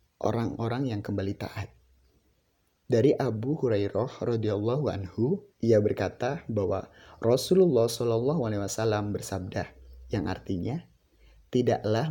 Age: 30-49